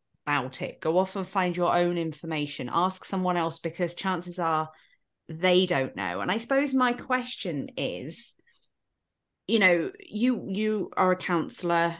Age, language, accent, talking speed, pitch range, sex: 30-49, English, British, 155 wpm, 175-235 Hz, female